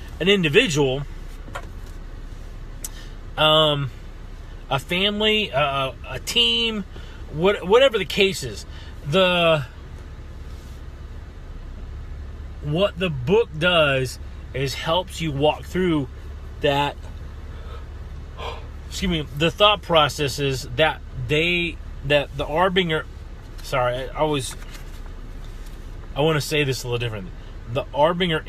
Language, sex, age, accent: English, male, 30-49, American